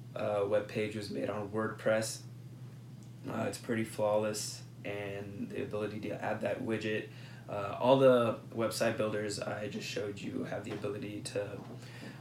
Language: English